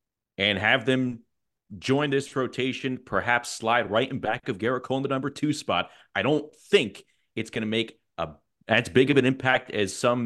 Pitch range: 95-140 Hz